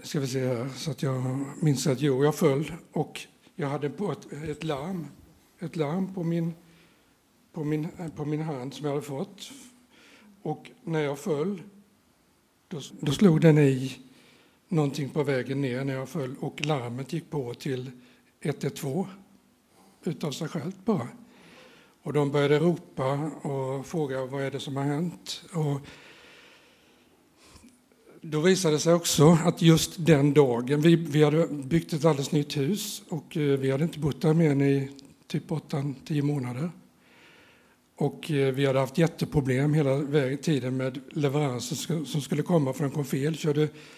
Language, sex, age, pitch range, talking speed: Swedish, male, 60-79, 140-170 Hz, 160 wpm